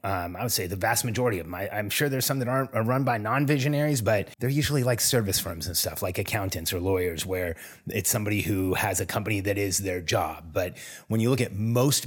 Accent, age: American, 30-49